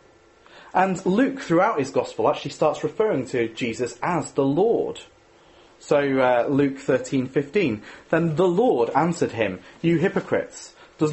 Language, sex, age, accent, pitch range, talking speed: English, male, 30-49, British, 130-170 Hz, 140 wpm